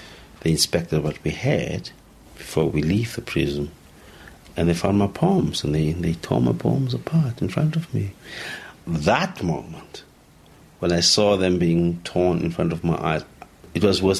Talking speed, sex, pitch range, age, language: 180 wpm, male, 75-90 Hz, 50-69, English